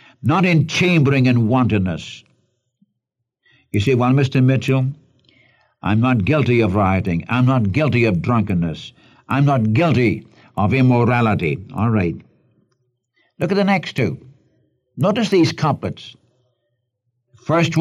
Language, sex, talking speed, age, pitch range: English, male, 120 wpm, 60-79, 110-135 Hz